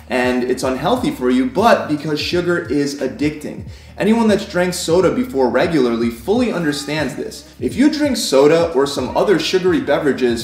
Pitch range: 130-185 Hz